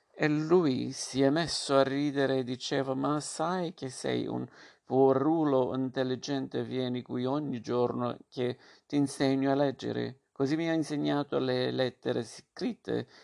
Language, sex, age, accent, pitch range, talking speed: Italian, male, 50-69, native, 125-140 Hz, 145 wpm